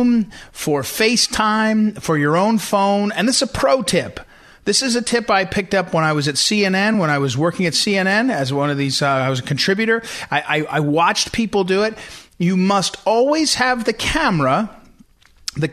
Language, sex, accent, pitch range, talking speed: English, male, American, 155-215 Hz, 200 wpm